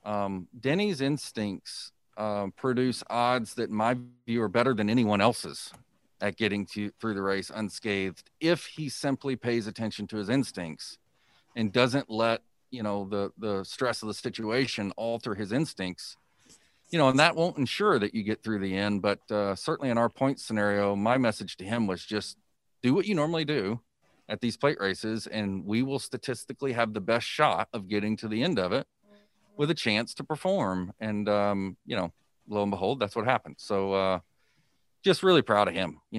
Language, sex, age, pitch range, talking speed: English, male, 40-59, 100-120 Hz, 190 wpm